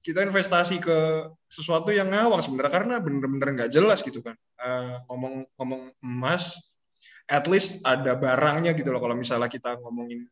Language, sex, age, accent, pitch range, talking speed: Indonesian, male, 20-39, native, 125-180 Hz, 155 wpm